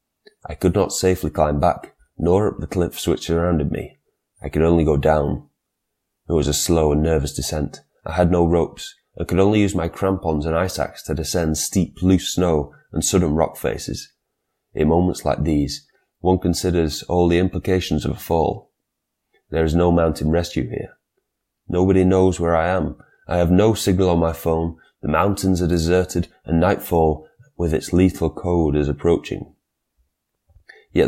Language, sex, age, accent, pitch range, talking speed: English, male, 30-49, British, 75-90 Hz, 175 wpm